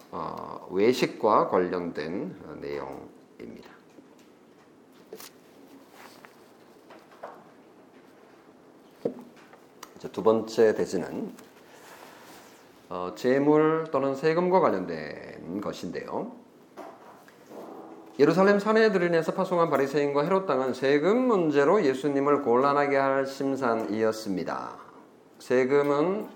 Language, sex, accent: Korean, male, native